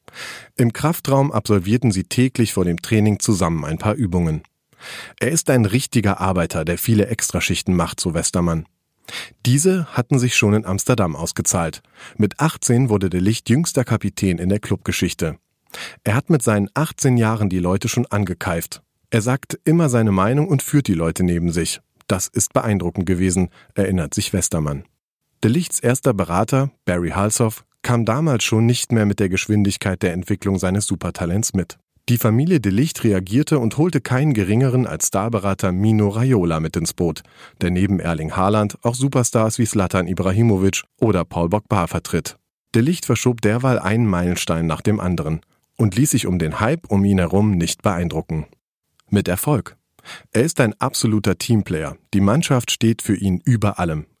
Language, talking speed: German, 165 wpm